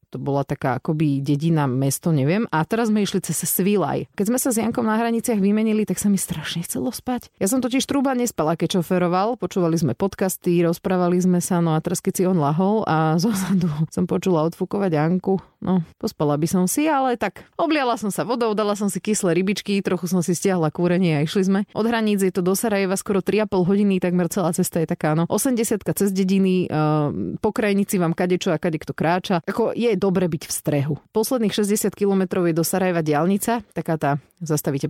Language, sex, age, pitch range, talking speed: Slovak, female, 30-49, 160-205 Hz, 210 wpm